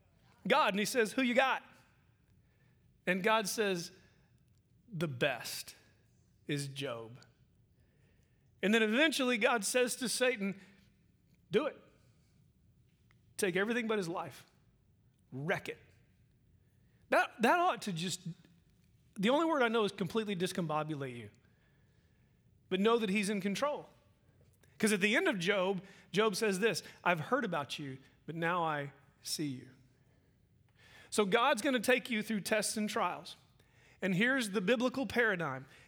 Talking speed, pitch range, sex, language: 135 wpm, 170-240 Hz, male, English